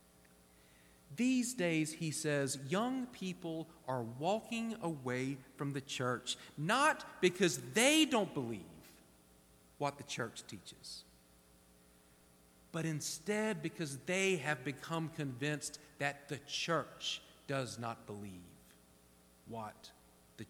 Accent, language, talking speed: American, English, 105 wpm